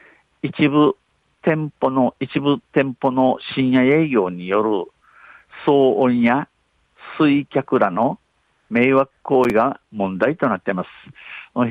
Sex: male